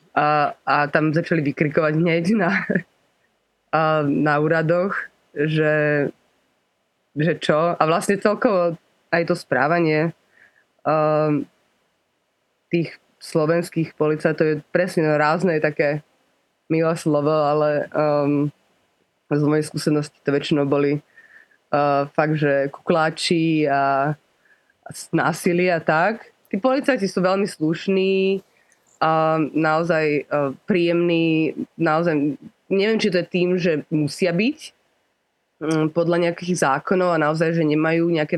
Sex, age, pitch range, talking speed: female, 20-39, 150-170 Hz, 115 wpm